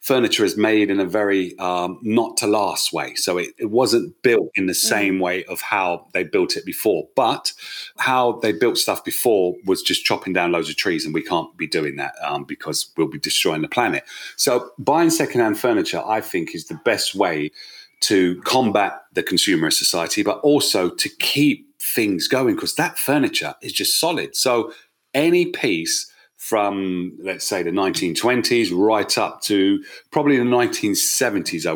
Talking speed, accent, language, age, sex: 180 wpm, British, English, 40-59, male